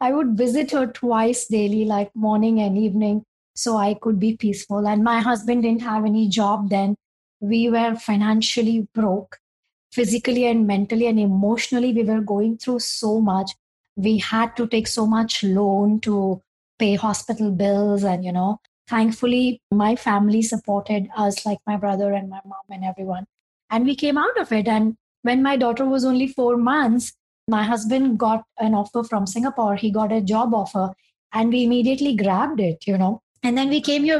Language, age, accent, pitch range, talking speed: English, 20-39, Indian, 215-255 Hz, 180 wpm